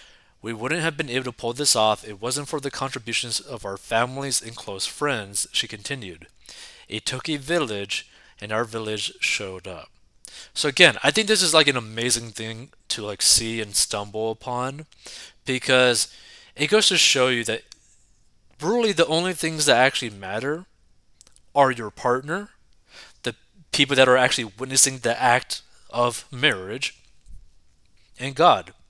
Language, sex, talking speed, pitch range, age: English, male, 160 wpm, 110-145 Hz, 20-39